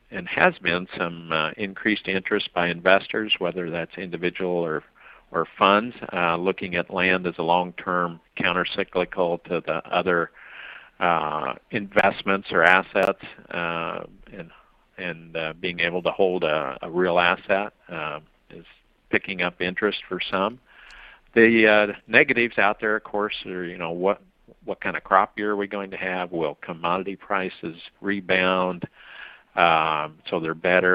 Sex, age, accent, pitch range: male, 50-69, American, 90-105 Hz